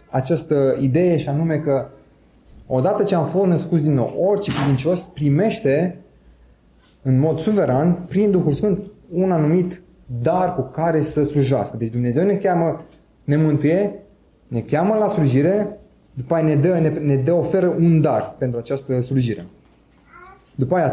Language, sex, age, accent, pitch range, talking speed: Romanian, male, 30-49, native, 135-175 Hz, 150 wpm